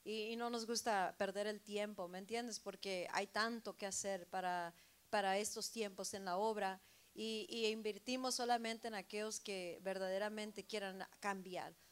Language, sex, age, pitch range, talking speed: Spanish, female, 40-59, 190-230 Hz, 160 wpm